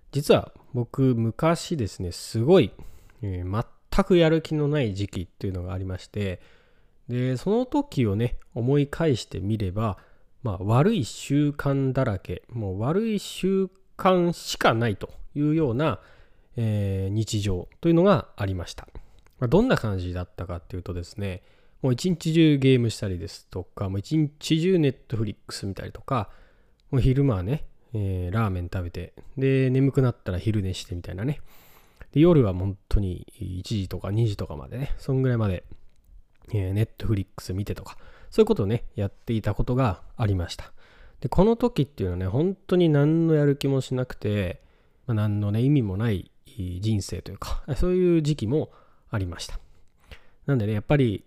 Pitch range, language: 95-140 Hz, Japanese